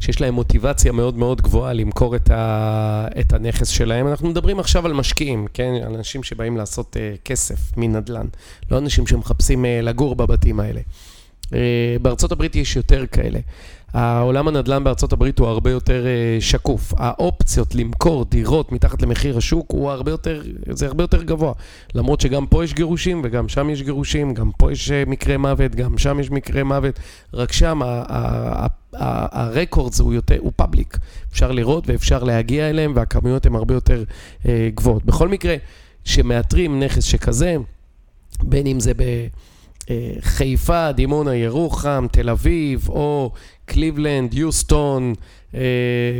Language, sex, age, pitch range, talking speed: Hebrew, male, 30-49, 110-140 Hz, 155 wpm